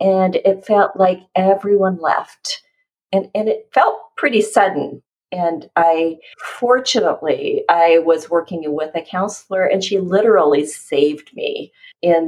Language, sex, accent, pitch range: English, female, American, 160-215 Hz